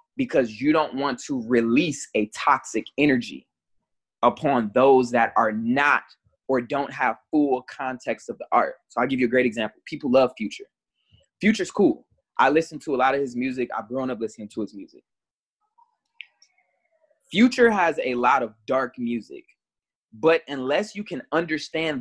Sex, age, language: male, 20-39, English